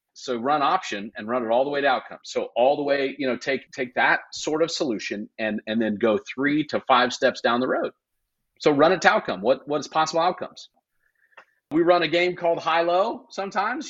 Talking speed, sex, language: 225 wpm, male, English